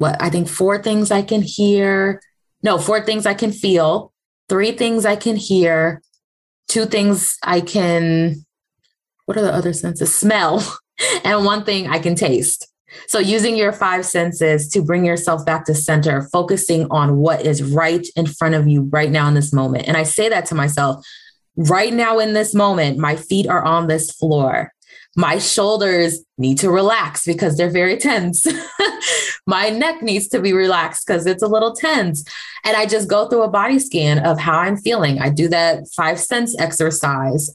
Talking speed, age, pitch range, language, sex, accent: 185 wpm, 20-39, 160-210 Hz, English, female, American